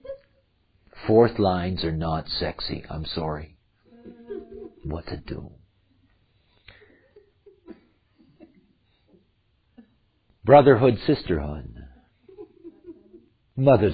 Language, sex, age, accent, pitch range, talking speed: English, male, 50-69, American, 110-165 Hz, 55 wpm